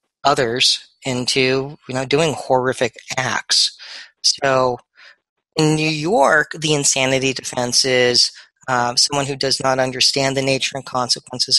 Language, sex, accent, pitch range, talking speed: English, male, American, 125-150 Hz, 130 wpm